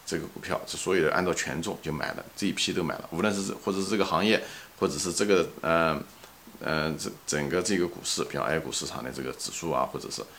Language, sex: Chinese, male